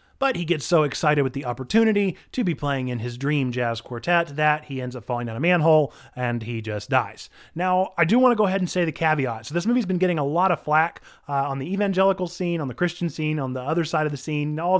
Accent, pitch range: American, 135-180 Hz